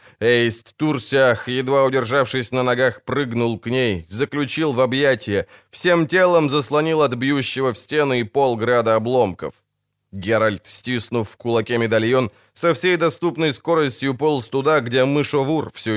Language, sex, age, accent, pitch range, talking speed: Ukrainian, male, 20-39, native, 115-145 Hz, 135 wpm